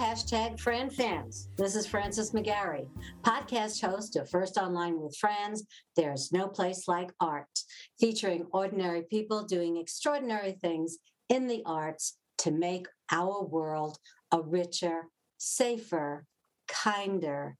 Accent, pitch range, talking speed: American, 160-190 Hz, 125 wpm